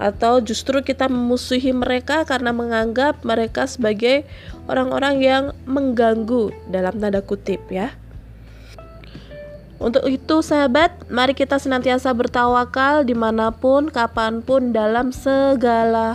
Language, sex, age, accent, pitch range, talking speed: Indonesian, female, 20-39, native, 220-265 Hz, 100 wpm